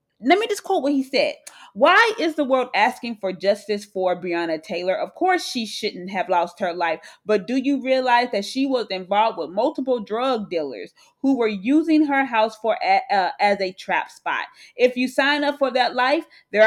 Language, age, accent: English, 30-49, American